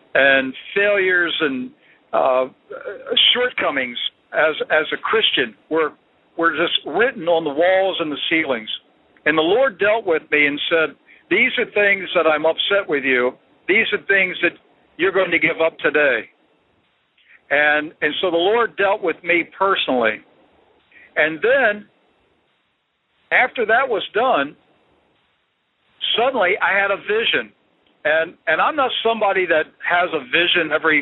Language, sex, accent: English, male, American